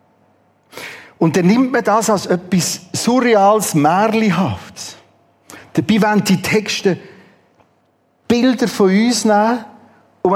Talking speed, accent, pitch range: 105 wpm, Austrian, 135-205 Hz